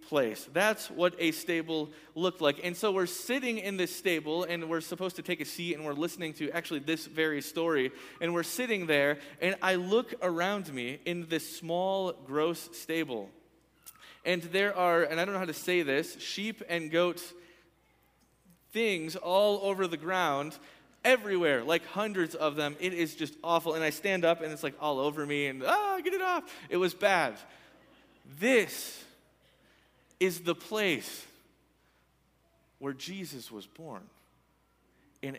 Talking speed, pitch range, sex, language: 165 wpm, 145-185 Hz, male, English